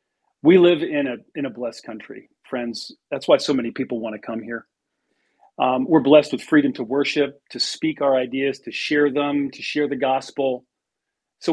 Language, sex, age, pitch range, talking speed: English, male, 40-59, 130-170 Hz, 195 wpm